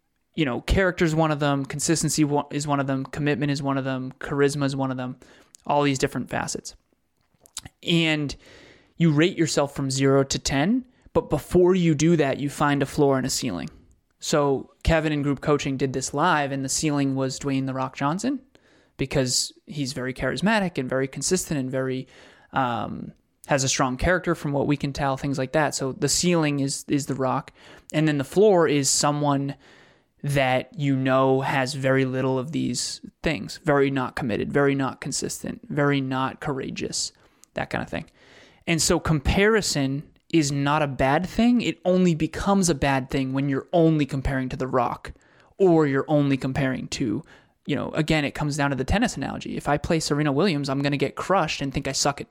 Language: English